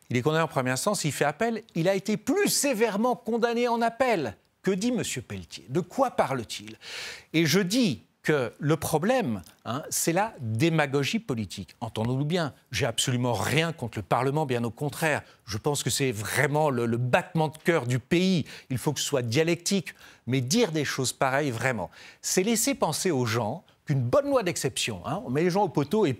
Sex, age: male, 40-59